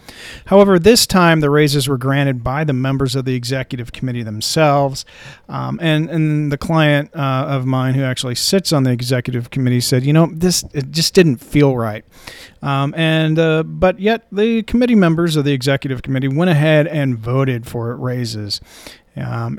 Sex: male